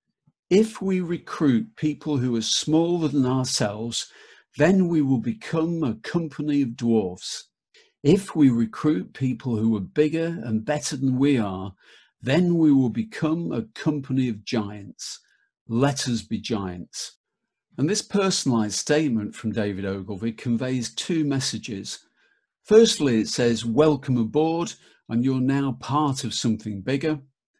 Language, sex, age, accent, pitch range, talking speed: English, male, 50-69, British, 115-160 Hz, 135 wpm